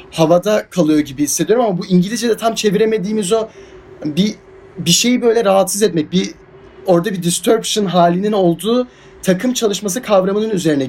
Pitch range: 175-225 Hz